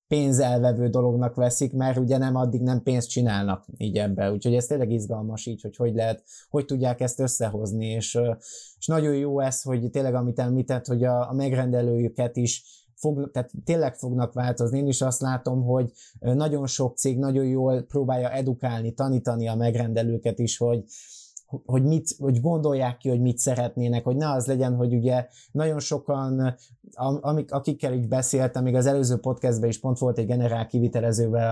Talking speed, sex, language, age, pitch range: 170 wpm, male, Hungarian, 20-39, 115-130 Hz